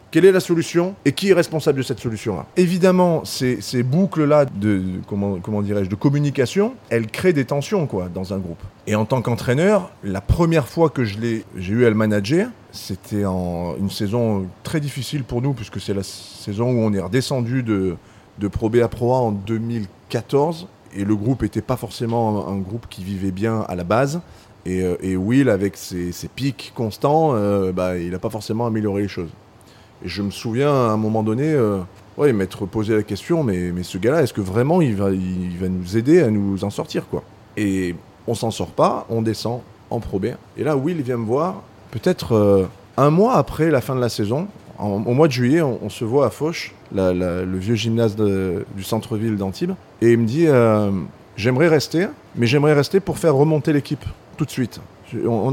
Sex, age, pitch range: male, 30-49, 100-140 Hz